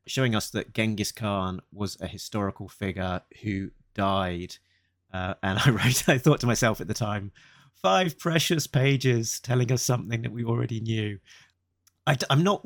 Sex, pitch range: male, 95-120 Hz